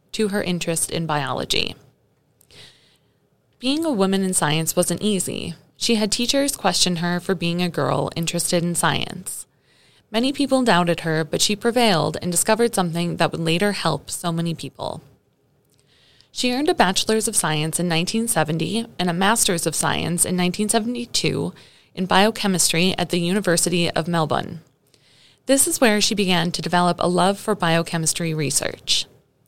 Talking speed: 155 wpm